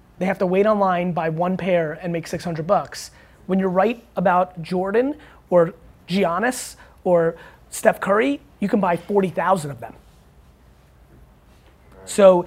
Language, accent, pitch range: English, American, 175-210 Hz